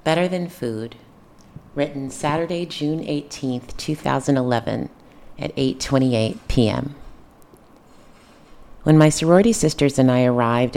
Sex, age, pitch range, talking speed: female, 40-59, 120-145 Hz, 100 wpm